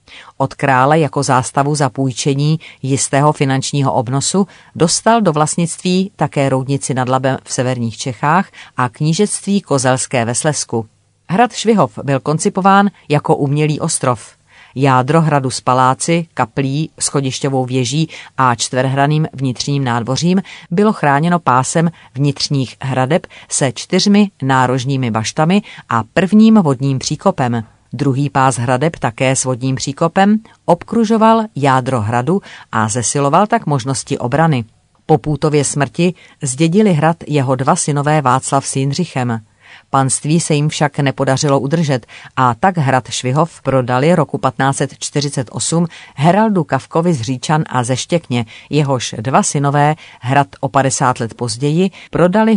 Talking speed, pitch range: 125 wpm, 130-165 Hz